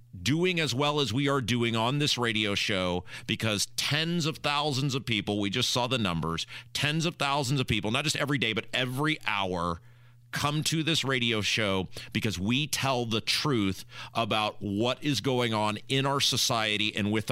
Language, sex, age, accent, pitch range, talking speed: English, male, 40-59, American, 115-145 Hz, 185 wpm